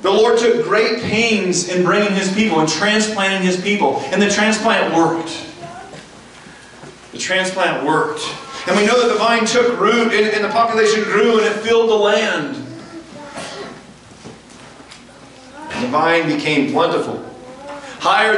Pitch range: 175-230 Hz